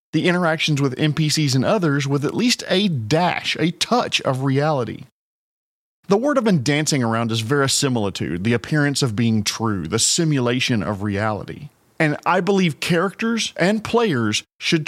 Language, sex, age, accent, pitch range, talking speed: English, male, 40-59, American, 125-185 Hz, 155 wpm